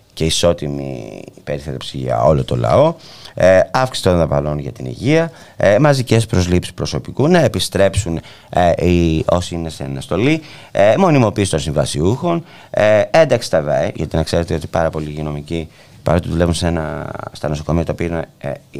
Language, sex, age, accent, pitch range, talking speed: Greek, male, 30-49, Spanish, 75-110 Hz, 160 wpm